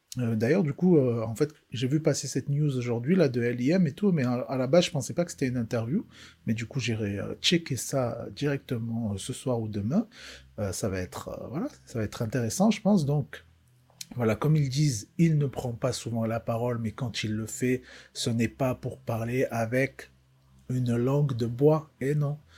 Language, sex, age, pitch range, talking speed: French, male, 40-59, 110-135 Hz, 225 wpm